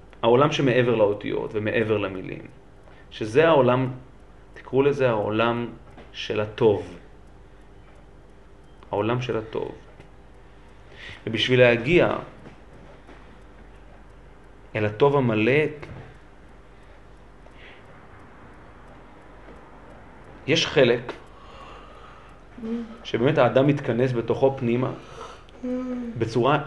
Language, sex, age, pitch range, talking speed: Hebrew, male, 40-59, 100-135 Hz, 65 wpm